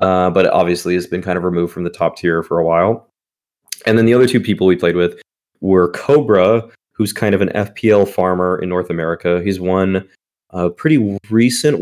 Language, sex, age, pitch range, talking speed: English, male, 20-39, 90-115 Hz, 205 wpm